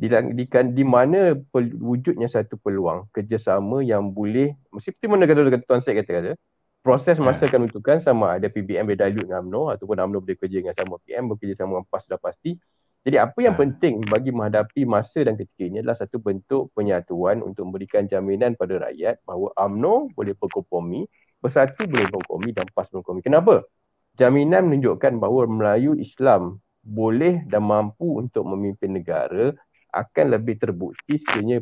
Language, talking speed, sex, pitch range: Malay, 160 wpm, male, 100-135 Hz